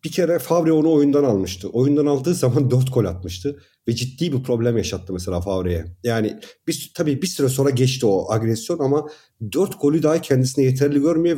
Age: 50-69